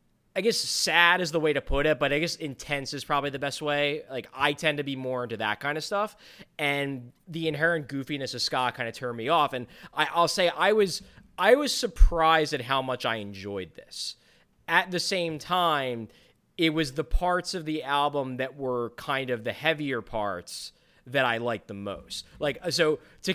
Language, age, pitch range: English, 20-39, 130-175 Hz